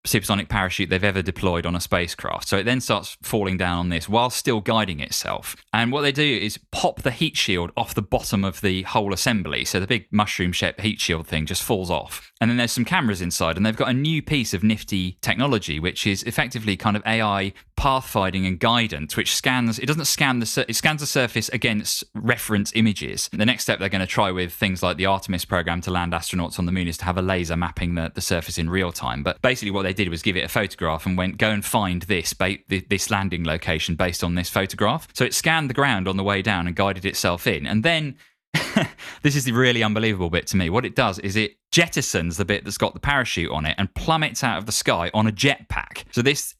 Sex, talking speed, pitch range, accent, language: male, 240 wpm, 90-120 Hz, British, English